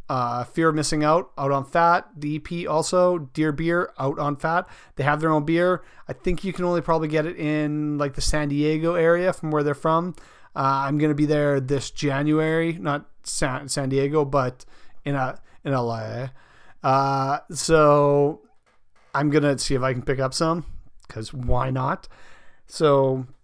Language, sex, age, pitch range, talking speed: English, male, 40-59, 135-165 Hz, 175 wpm